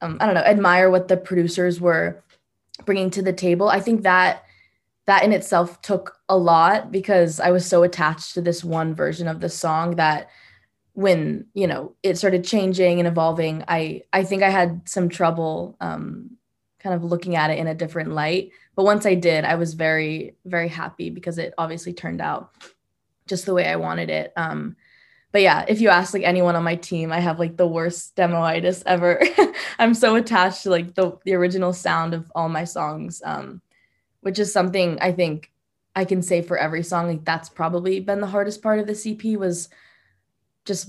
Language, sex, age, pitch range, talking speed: English, female, 20-39, 165-190 Hz, 200 wpm